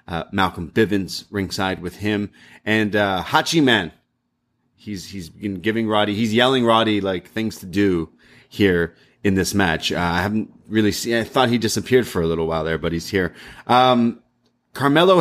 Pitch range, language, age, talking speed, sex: 95-120 Hz, English, 30-49, 180 wpm, male